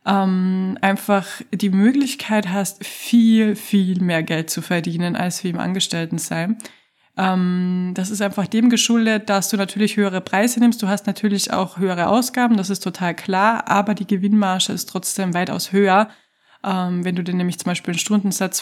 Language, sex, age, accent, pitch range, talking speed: German, female, 20-39, German, 190-220 Hz, 175 wpm